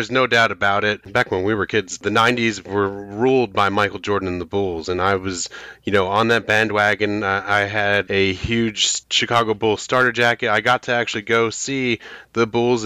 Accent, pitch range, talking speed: American, 105-120 Hz, 210 wpm